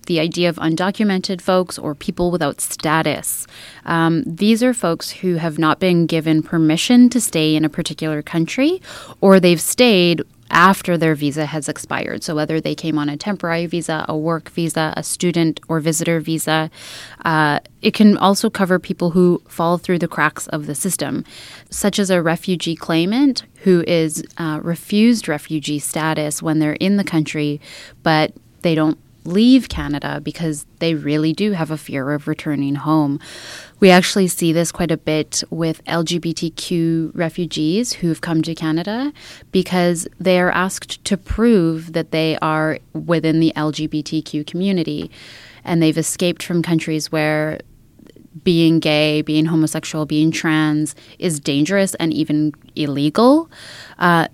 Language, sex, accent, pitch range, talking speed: English, female, American, 155-180 Hz, 155 wpm